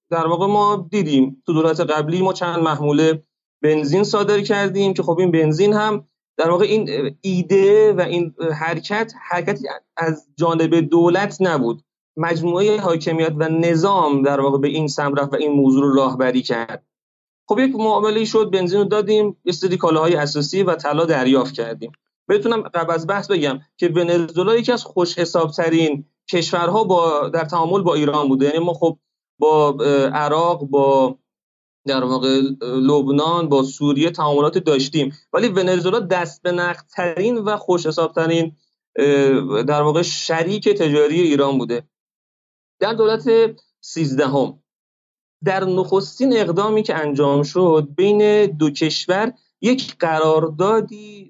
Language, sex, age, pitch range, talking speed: Persian, male, 30-49, 145-190 Hz, 135 wpm